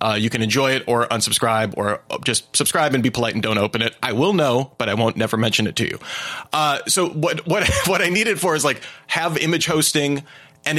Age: 30-49